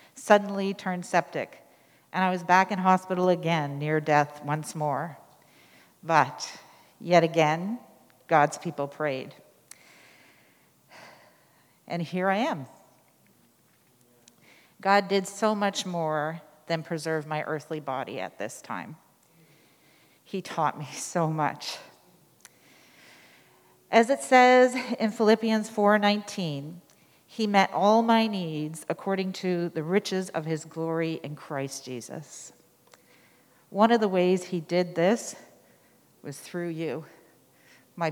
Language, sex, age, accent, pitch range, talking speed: English, female, 40-59, American, 160-205 Hz, 115 wpm